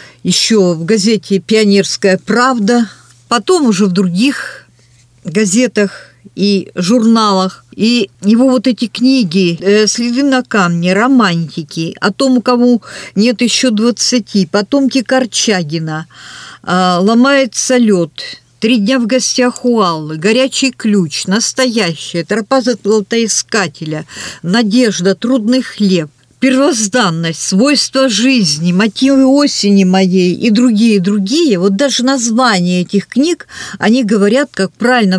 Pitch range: 190-250 Hz